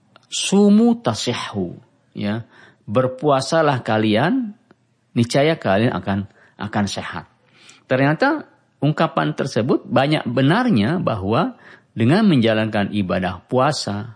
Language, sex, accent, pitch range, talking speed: Indonesian, male, native, 100-145 Hz, 85 wpm